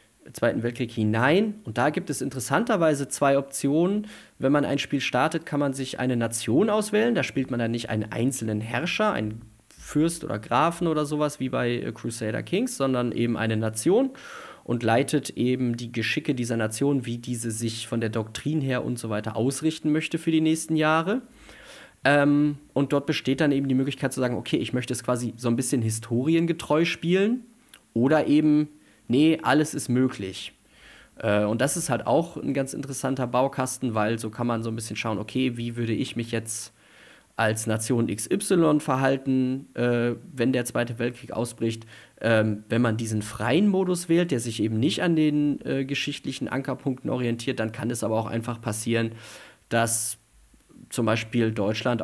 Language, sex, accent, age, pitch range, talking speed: German, male, German, 30-49, 115-145 Hz, 175 wpm